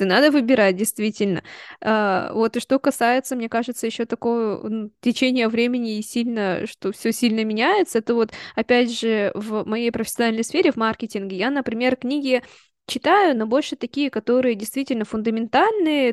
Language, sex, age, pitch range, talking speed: Russian, female, 20-39, 220-260 Hz, 140 wpm